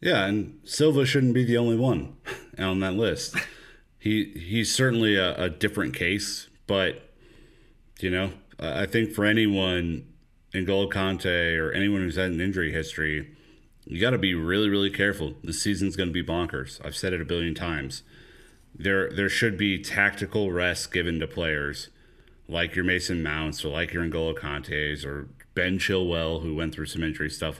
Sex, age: male, 30-49